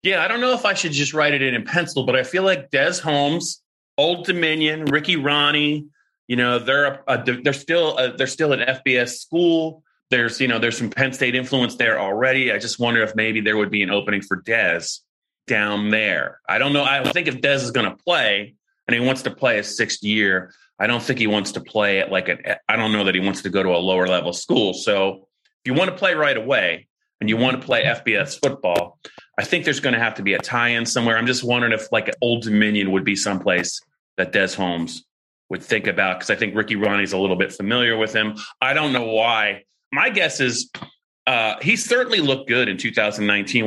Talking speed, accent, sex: 235 wpm, American, male